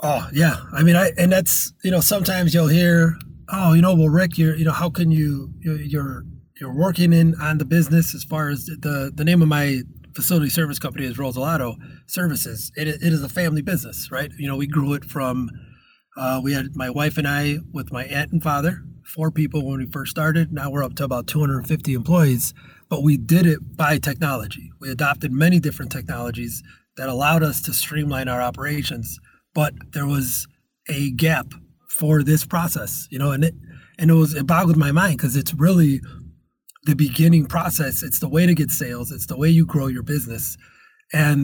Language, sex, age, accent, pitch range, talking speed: English, male, 30-49, American, 140-160 Hz, 200 wpm